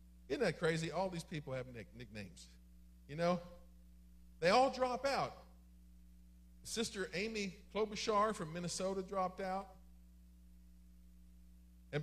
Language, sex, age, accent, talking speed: English, male, 50-69, American, 110 wpm